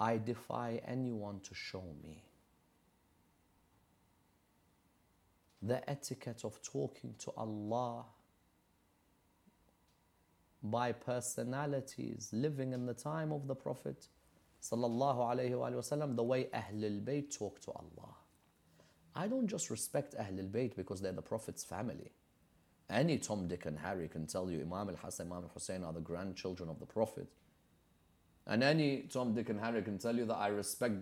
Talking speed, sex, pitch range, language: 140 wpm, male, 95-130 Hz, English